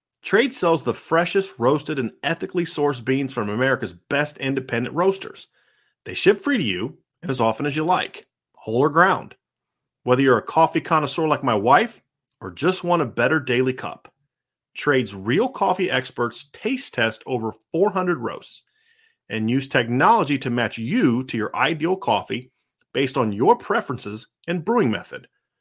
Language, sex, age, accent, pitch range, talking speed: English, male, 40-59, American, 125-175 Hz, 160 wpm